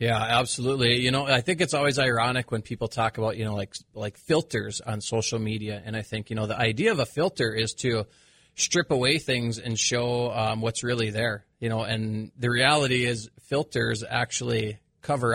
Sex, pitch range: male, 110-130 Hz